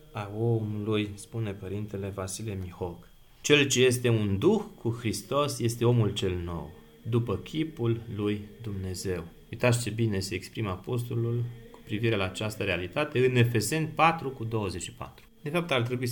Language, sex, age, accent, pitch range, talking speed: Romanian, male, 30-49, native, 105-130 Hz, 155 wpm